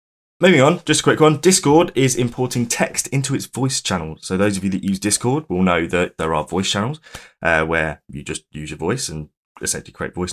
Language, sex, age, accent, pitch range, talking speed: English, male, 20-39, British, 90-115 Hz, 225 wpm